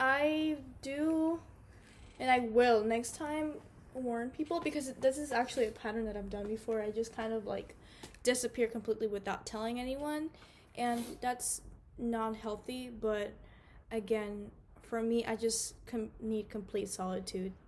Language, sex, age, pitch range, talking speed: English, female, 10-29, 220-260 Hz, 145 wpm